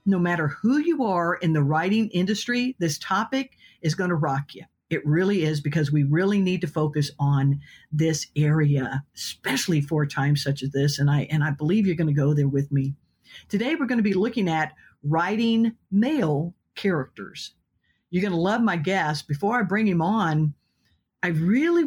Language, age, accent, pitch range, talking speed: English, 50-69, American, 150-210 Hz, 190 wpm